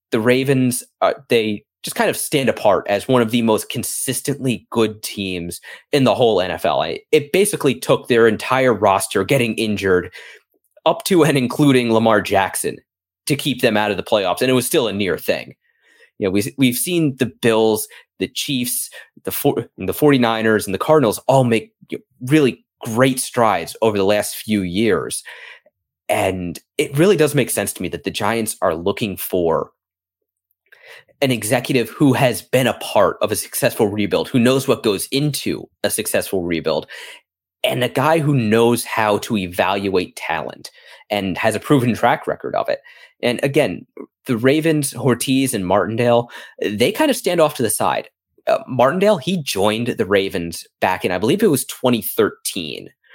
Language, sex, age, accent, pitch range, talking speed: English, male, 30-49, American, 105-135 Hz, 175 wpm